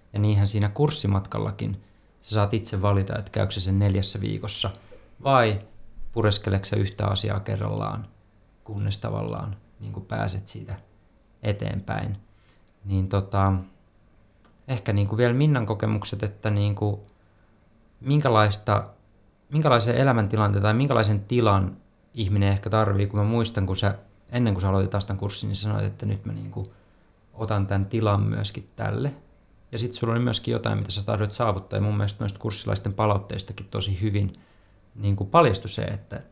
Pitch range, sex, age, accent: 100-110 Hz, male, 30-49, native